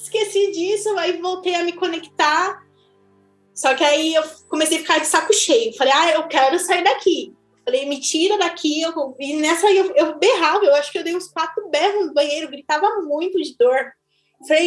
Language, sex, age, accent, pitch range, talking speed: Portuguese, female, 20-39, Brazilian, 300-395 Hz, 195 wpm